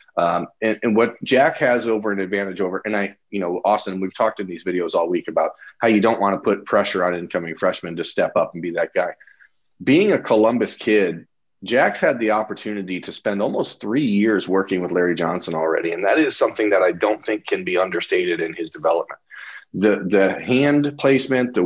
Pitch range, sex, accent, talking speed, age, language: 95-120 Hz, male, American, 215 wpm, 40-59, English